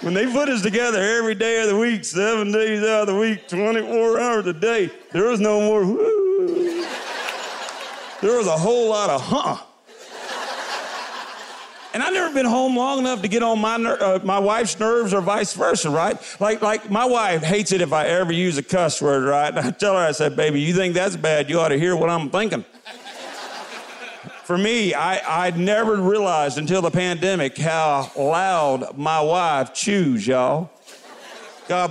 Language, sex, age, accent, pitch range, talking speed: English, male, 50-69, American, 185-240 Hz, 190 wpm